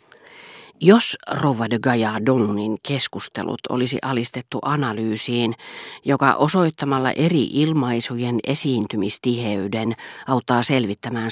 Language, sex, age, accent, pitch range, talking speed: Finnish, female, 40-59, native, 115-160 Hz, 85 wpm